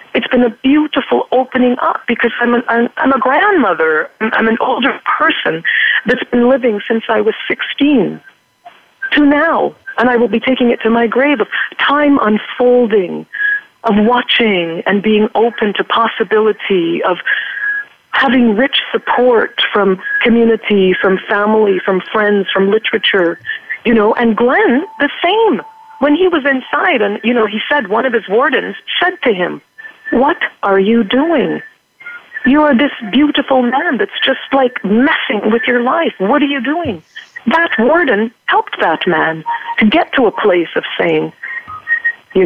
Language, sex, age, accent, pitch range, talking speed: English, female, 50-69, American, 210-295 Hz, 155 wpm